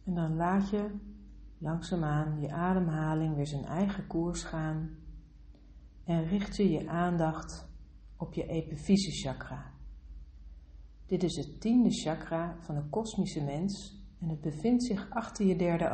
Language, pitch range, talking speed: Dutch, 145-195 Hz, 135 wpm